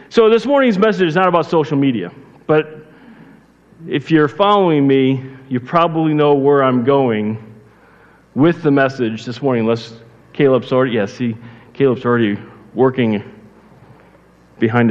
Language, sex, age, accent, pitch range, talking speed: English, male, 40-59, American, 130-170 Hz, 140 wpm